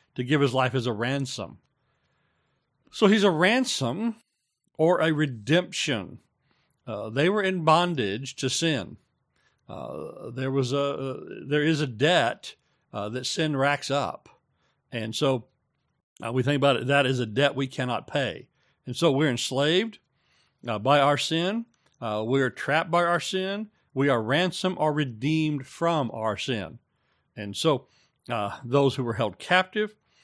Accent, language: American, English